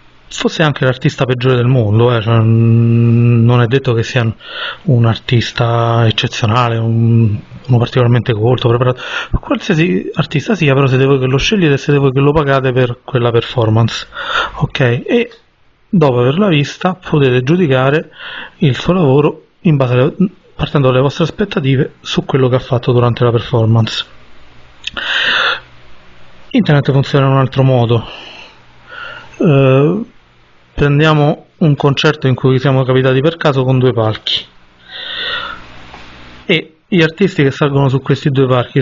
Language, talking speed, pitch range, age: Italian, 140 wpm, 120-150 Hz, 30-49